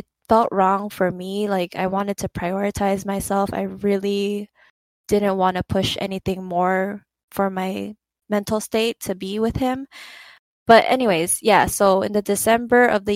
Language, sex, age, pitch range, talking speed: English, female, 10-29, 185-220 Hz, 160 wpm